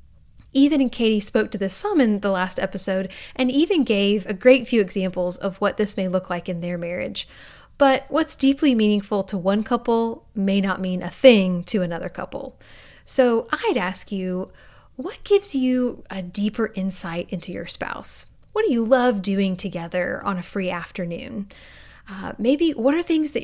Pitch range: 190-255 Hz